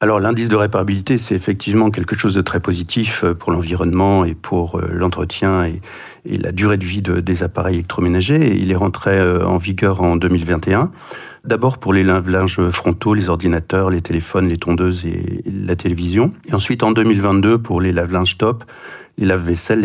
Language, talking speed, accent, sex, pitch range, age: French, 165 wpm, French, male, 90-105 Hz, 50-69